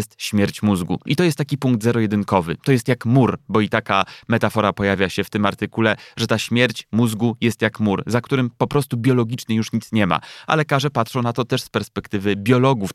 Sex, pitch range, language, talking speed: male, 110-135 Hz, Polish, 220 wpm